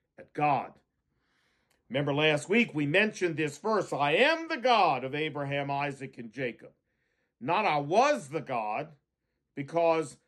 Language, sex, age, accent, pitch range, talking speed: English, male, 50-69, American, 145-215 Hz, 140 wpm